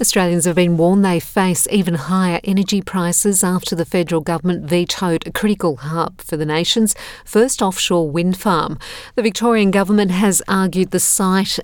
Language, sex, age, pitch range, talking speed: English, female, 50-69, 170-200 Hz, 165 wpm